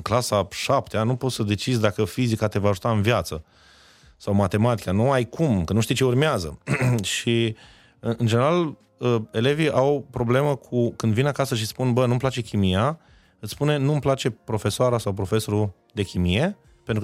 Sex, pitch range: male, 105-140 Hz